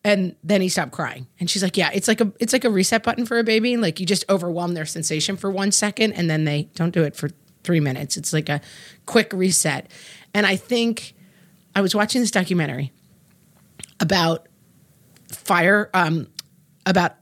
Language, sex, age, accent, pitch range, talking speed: English, female, 30-49, American, 160-205 Hz, 190 wpm